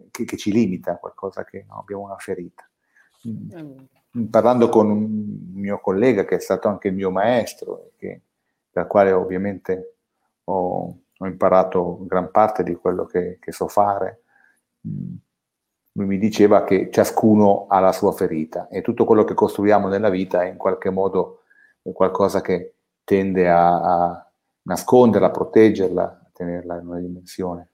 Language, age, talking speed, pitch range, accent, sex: Italian, 30-49, 155 wpm, 90-110 Hz, native, male